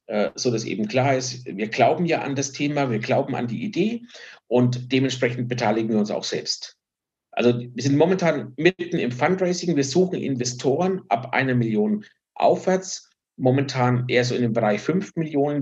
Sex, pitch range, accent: male, 125-155 Hz, German